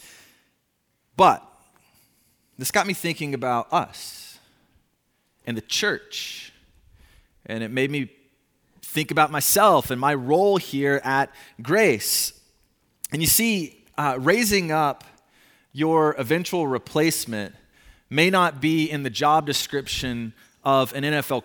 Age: 30-49